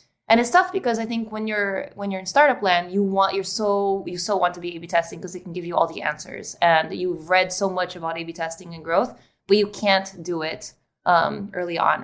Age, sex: 20-39, female